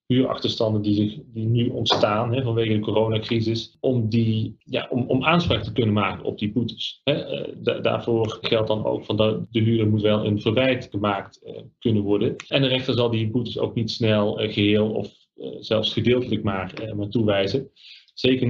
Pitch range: 105-115 Hz